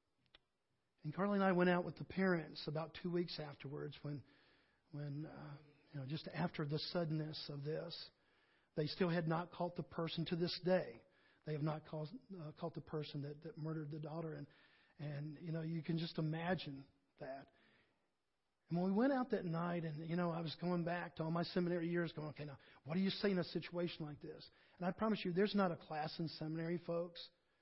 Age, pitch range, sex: 40-59, 155-185 Hz, male